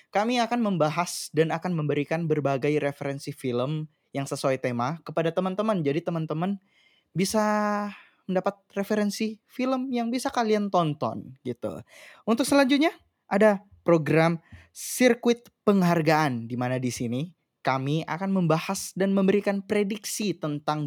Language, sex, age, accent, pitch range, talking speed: Indonesian, male, 20-39, native, 140-215 Hz, 120 wpm